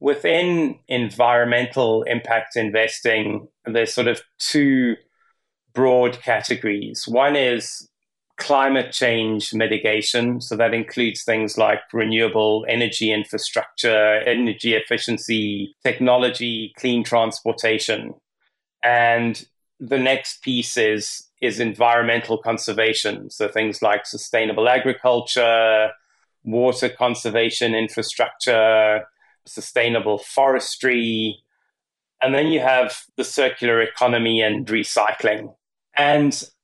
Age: 30-49